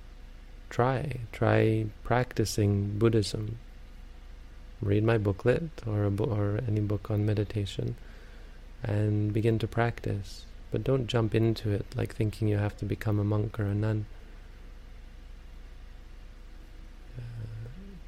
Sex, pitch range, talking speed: male, 100-115 Hz, 120 wpm